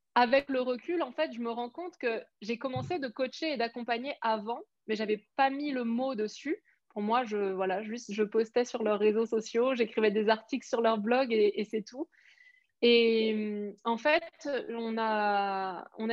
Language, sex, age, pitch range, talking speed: French, female, 20-39, 215-260 Hz, 195 wpm